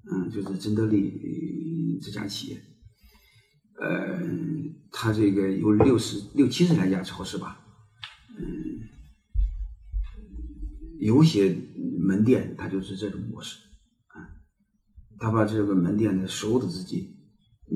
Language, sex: Chinese, male